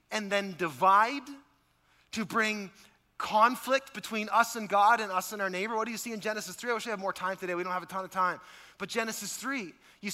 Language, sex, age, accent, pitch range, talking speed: English, male, 30-49, American, 175-230 Hz, 235 wpm